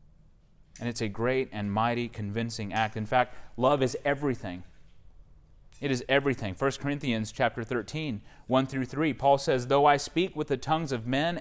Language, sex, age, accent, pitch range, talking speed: English, male, 30-49, American, 115-150 Hz, 175 wpm